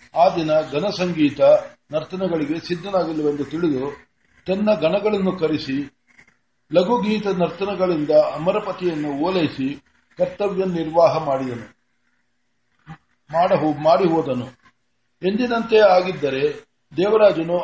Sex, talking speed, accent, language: male, 75 wpm, native, Kannada